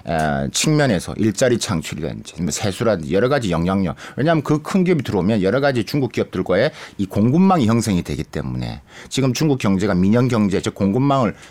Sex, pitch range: male, 90-125 Hz